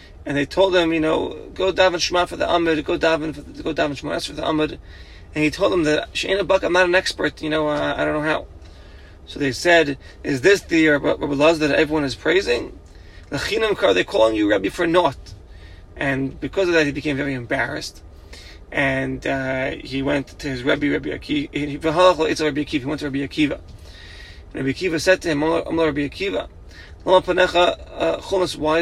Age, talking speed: 30-49, 195 wpm